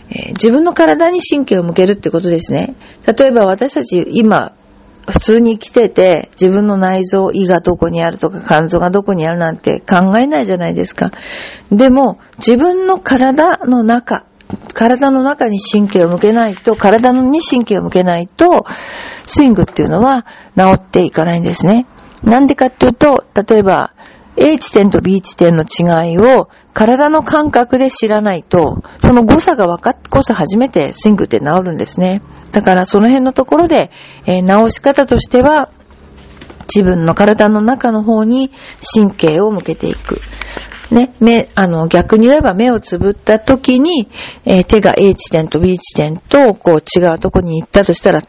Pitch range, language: 180-255 Hz, Japanese